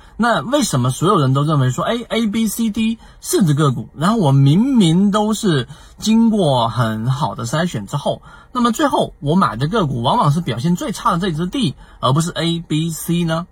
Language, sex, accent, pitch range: Chinese, male, native, 125-185 Hz